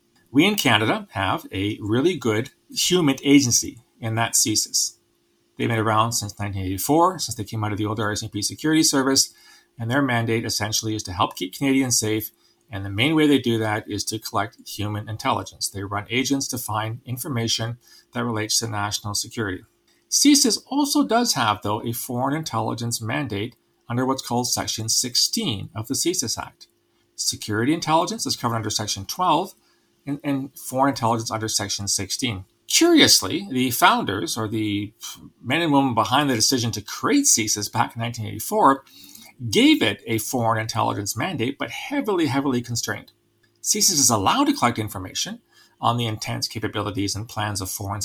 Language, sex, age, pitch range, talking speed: English, male, 40-59, 105-135 Hz, 165 wpm